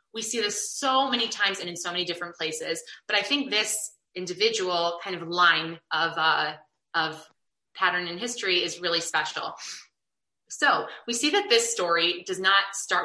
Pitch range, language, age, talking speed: 175-235 Hz, English, 20-39, 175 wpm